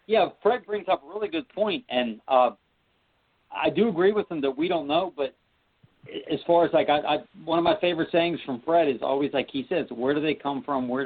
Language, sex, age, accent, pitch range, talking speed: English, male, 50-69, American, 130-170 Hz, 240 wpm